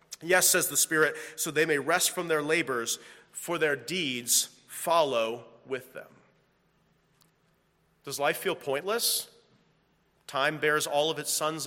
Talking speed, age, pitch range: 140 wpm, 40-59, 130-145 Hz